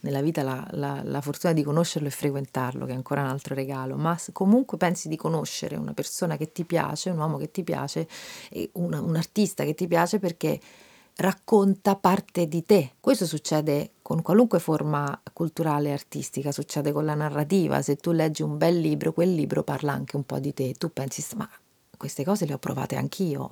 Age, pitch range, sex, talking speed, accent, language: 40-59, 145-180 Hz, female, 200 wpm, native, Italian